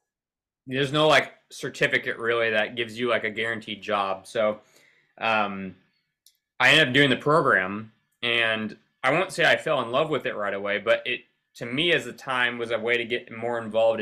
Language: English